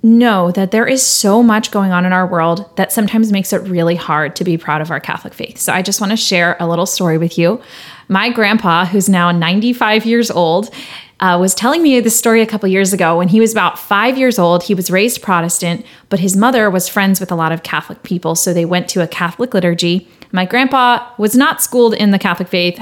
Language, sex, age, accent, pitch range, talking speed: English, female, 30-49, American, 185-245 Hz, 235 wpm